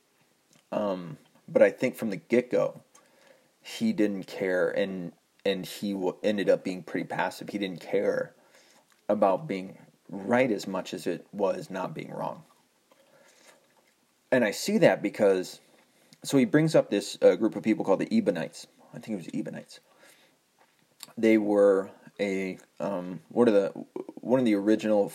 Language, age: English, 30-49